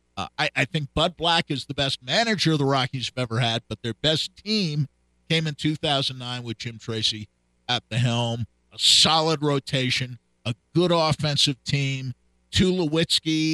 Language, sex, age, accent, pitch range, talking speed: English, male, 50-69, American, 125-170 Hz, 165 wpm